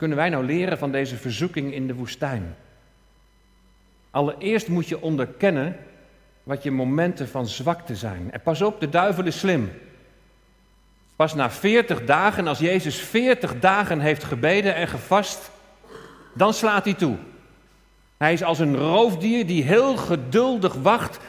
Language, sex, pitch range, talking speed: Dutch, male, 130-185 Hz, 145 wpm